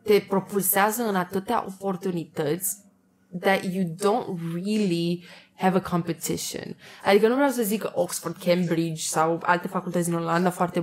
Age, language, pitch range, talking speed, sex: 20-39, Romanian, 170-200 Hz, 140 wpm, female